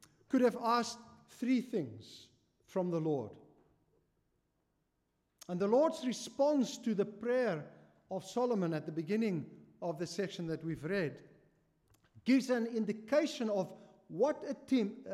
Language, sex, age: Italian, male, 50-69